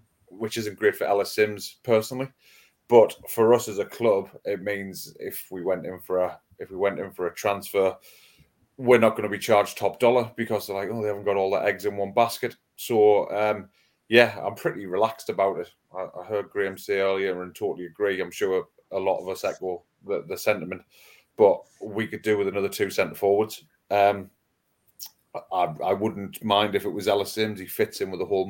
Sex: male